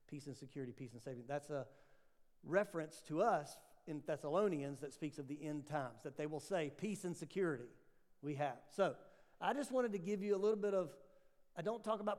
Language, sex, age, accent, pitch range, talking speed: English, male, 50-69, American, 135-175 Hz, 210 wpm